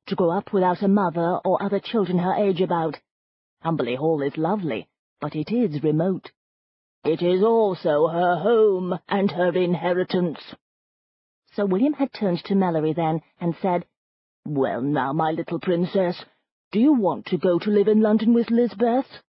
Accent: British